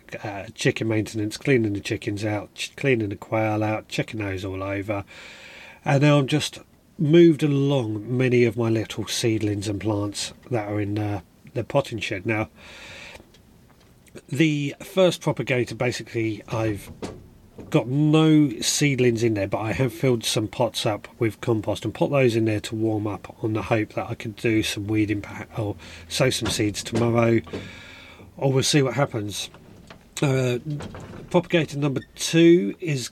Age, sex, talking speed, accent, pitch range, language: 30-49, male, 160 wpm, British, 110-140 Hz, English